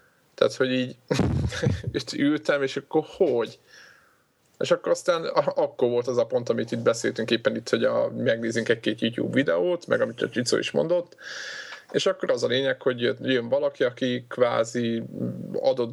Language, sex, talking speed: Hungarian, male, 160 wpm